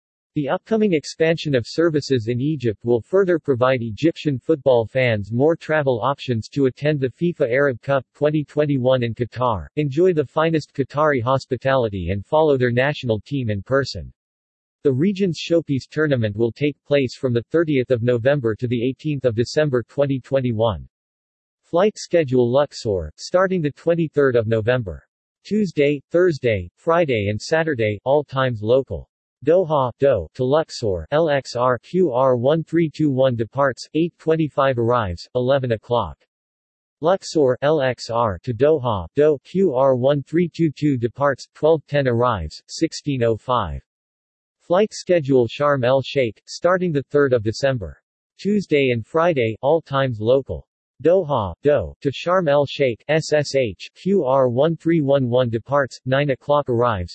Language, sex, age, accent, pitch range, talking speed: English, male, 50-69, American, 120-150 Hz, 120 wpm